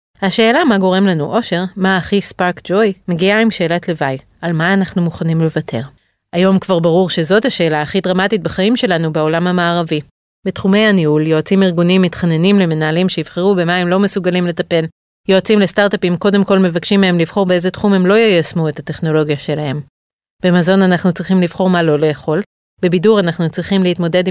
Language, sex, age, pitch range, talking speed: Hebrew, female, 30-49, 160-195 Hz, 165 wpm